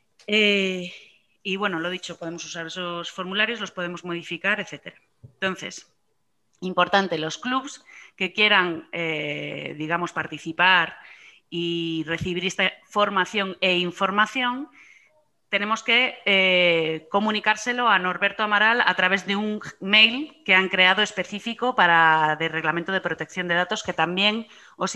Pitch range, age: 180-220 Hz, 30-49